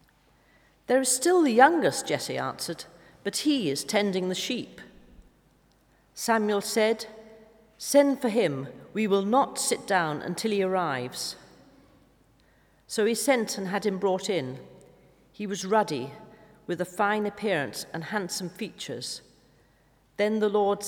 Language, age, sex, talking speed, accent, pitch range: English, 40-59, female, 135 wpm, British, 170-220 Hz